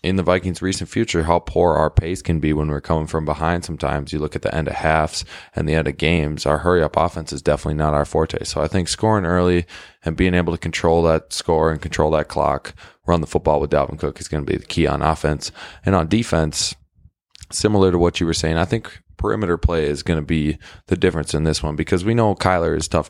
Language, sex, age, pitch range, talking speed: English, male, 20-39, 80-90 Hz, 250 wpm